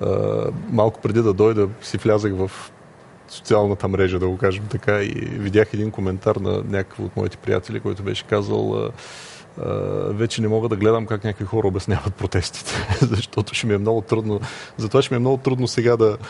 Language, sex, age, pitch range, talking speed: Bulgarian, male, 30-49, 100-115 Hz, 180 wpm